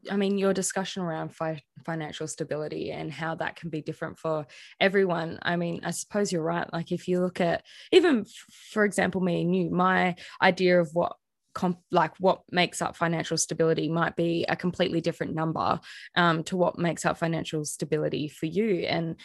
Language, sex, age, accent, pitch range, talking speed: English, female, 20-39, Australian, 160-195 Hz, 190 wpm